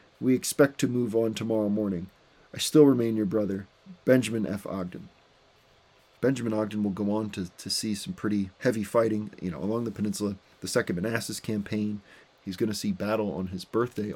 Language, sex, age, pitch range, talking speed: English, male, 30-49, 100-130 Hz, 185 wpm